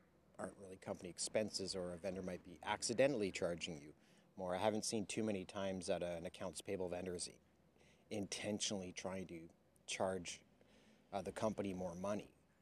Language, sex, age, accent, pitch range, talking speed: English, male, 30-49, American, 90-105 Hz, 160 wpm